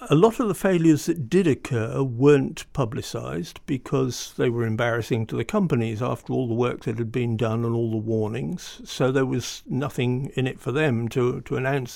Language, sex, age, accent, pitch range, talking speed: English, male, 50-69, British, 125-180 Hz, 200 wpm